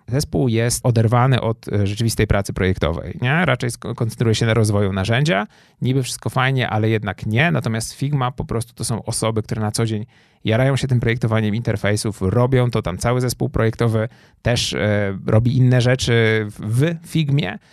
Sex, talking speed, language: male, 170 wpm, Polish